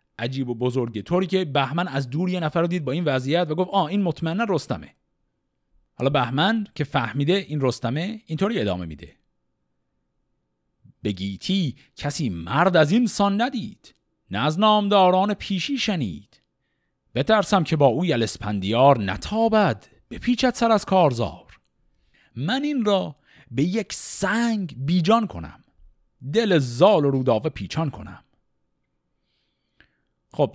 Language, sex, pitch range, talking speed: Persian, male, 120-190 Hz, 130 wpm